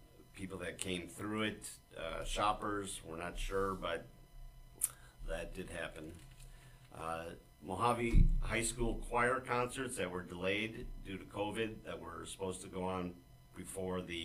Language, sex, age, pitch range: English, male, 50-69, 90-115 Hz